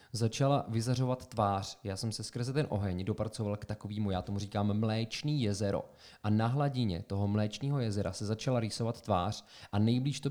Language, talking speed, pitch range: Czech, 175 wpm, 105-130 Hz